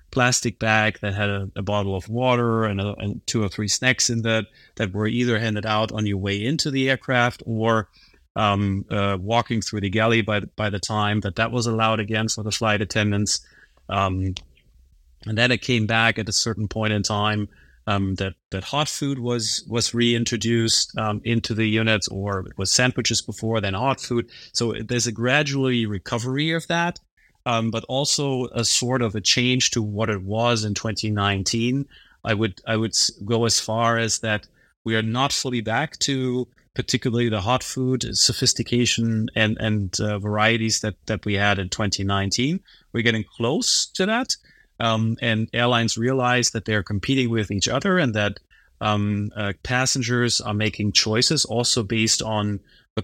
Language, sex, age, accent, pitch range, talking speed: English, male, 30-49, German, 105-120 Hz, 180 wpm